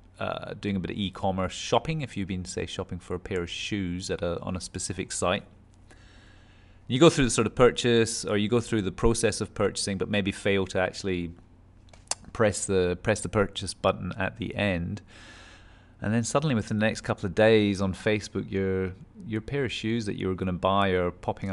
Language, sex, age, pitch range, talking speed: English, male, 30-49, 95-110 Hz, 205 wpm